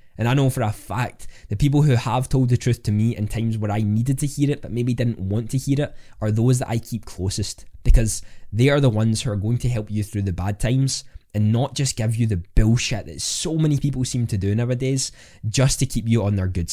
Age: 20-39